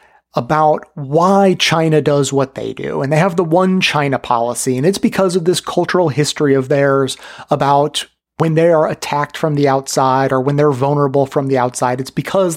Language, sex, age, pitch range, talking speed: English, male, 30-49, 140-190 Hz, 190 wpm